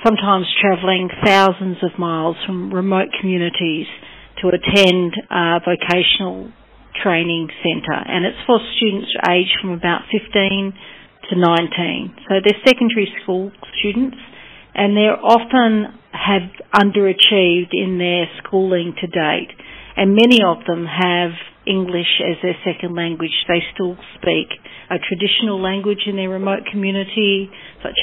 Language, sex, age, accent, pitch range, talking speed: English, female, 50-69, Australian, 175-205 Hz, 125 wpm